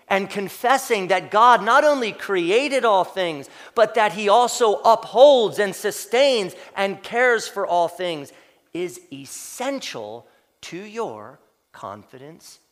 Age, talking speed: 40-59, 125 wpm